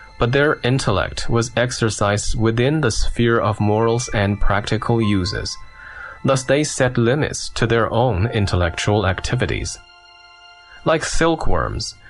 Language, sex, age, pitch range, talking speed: English, male, 20-39, 105-130 Hz, 120 wpm